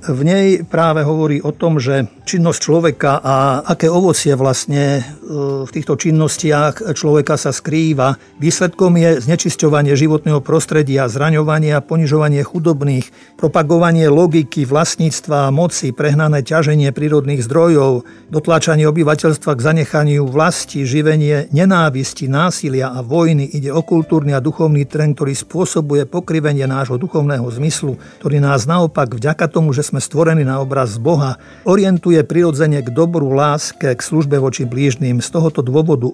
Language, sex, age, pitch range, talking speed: Slovak, male, 50-69, 140-160 Hz, 135 wpm